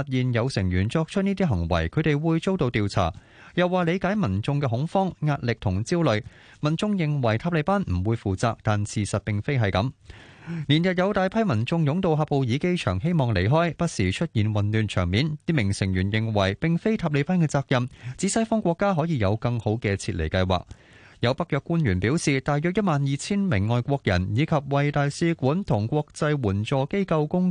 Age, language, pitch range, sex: 20-39, Chinese, 110-165 Hz, male